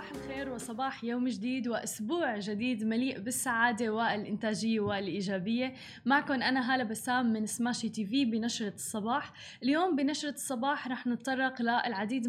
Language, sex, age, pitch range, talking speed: Arabic, female, 20-39, 225-275 Hz, 125 wpm